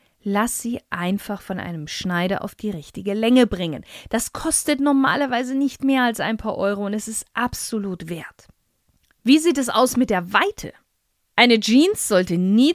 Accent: German